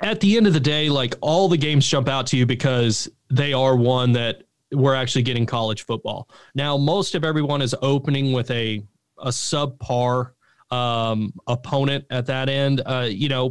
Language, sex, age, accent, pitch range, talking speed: English, male, 30-49, American, 125-150 Hz, 185 wpm